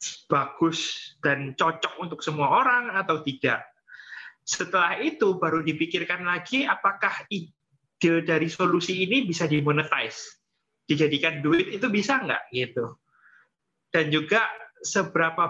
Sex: male